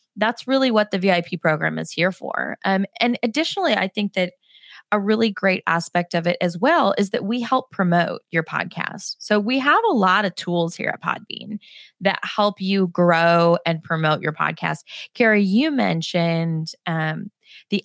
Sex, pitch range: female, 175-210 Hz